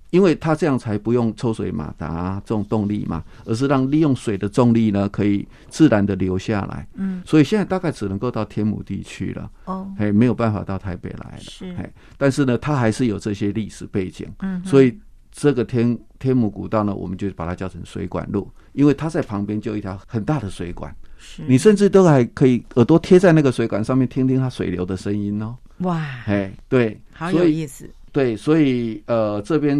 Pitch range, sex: 100-140 Hz, male